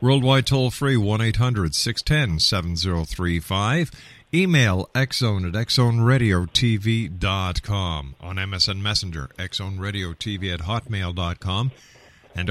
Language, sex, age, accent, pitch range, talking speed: English, male, 50-69, American, 95-120 Hz, 65 wpm